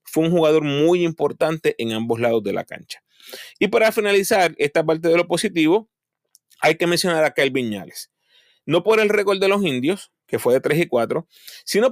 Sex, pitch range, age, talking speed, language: male, 135-185 Hz, 30-49, 195 wpm, Spanish